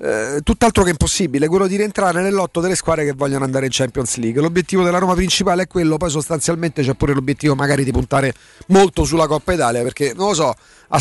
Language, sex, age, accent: Italian, male, 40-59, native